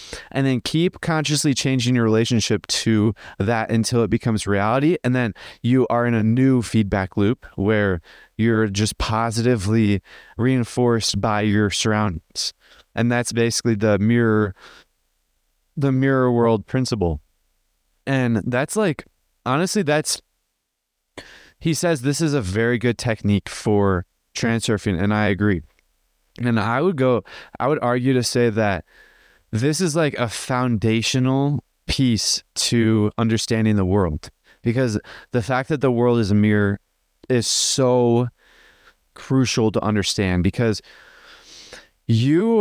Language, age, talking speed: English, 20-39, 130 wpm